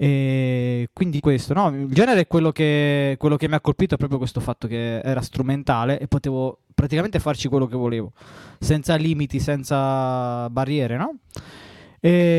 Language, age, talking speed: Italian, 20-39, 165 wpm